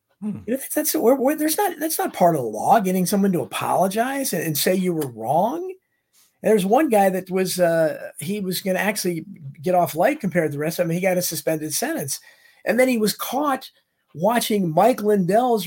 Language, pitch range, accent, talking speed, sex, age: English, 165-240 Hz, American, 230 wpm, male, 50-69